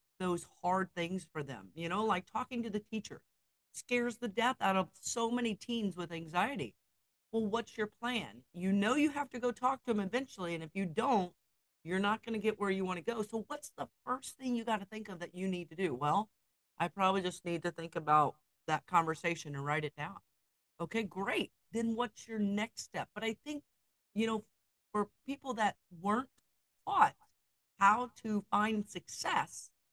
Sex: female